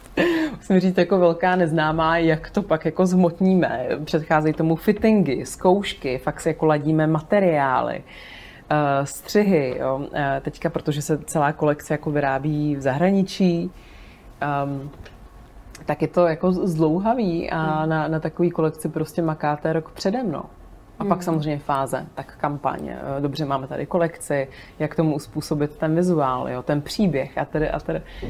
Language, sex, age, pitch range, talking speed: Czech, female, 30-49, 145-170 Hz, 140 wpm